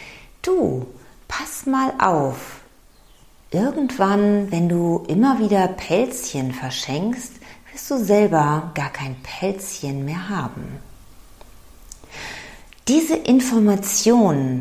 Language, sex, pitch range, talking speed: German, female, 160-235 Hz, 85 wpm